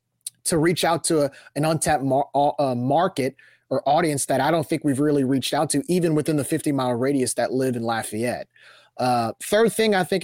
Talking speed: 205 wpm